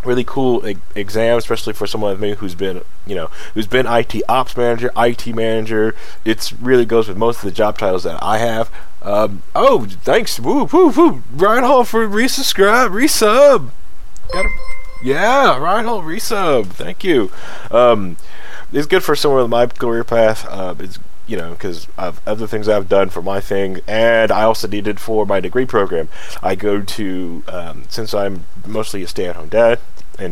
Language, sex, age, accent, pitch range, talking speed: English, male, 20-39, American, 100-120 Hz, 180 wpm